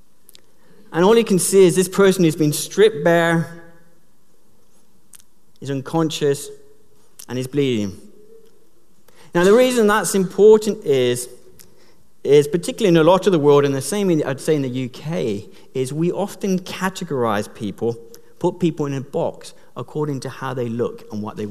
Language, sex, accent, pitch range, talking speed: English, male, British, 140-190 Hz, 160 wpm